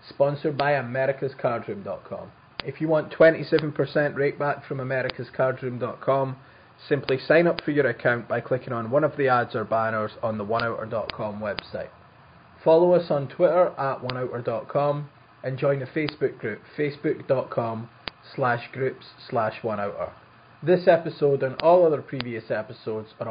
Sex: male